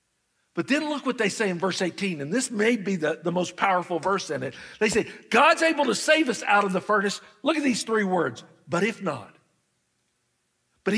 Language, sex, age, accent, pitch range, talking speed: English, male, 50-69, American, 140-210 Hz, 220 wpm